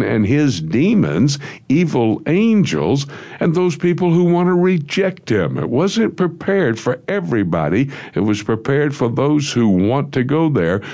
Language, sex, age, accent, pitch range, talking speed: English, male, 60-79, American, 100-150 Hz, 155 wpm